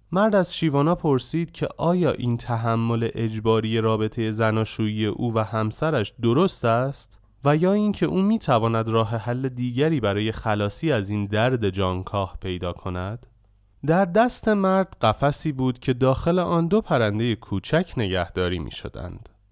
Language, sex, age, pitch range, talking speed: Persian, male, 30-49, 105-150 Hz, 145 wpm